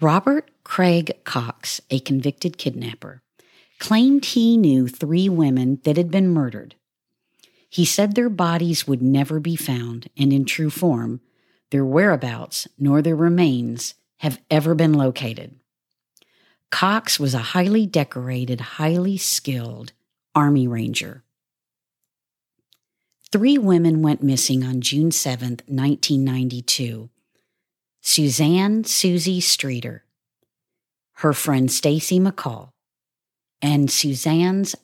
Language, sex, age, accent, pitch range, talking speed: English, female, 50-69, American, 130-175 Hz, 105 wpm